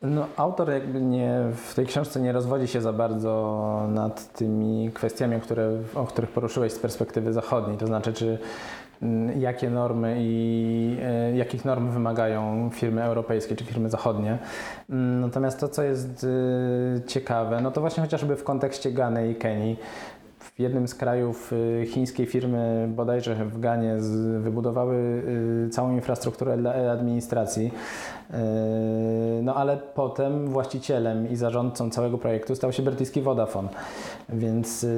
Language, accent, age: Polish, native, 20-39